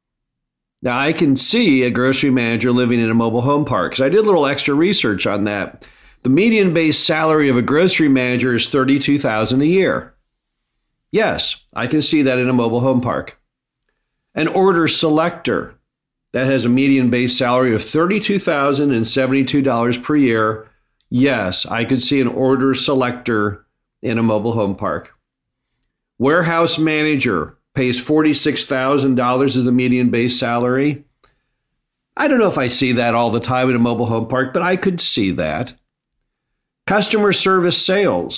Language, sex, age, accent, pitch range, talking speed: English, male, 50-69, American, 120-145 Hz, 160 wpm